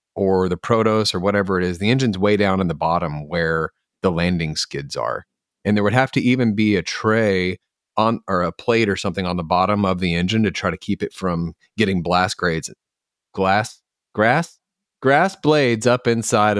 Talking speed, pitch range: 200 wpm, 90-115 Hz